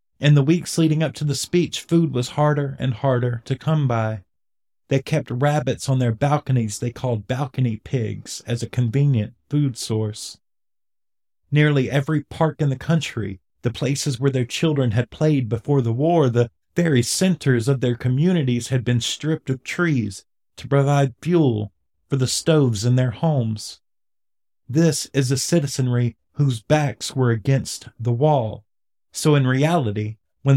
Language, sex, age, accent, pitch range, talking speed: English, male, 40-59, American, 120-150 Hz, 160 wpm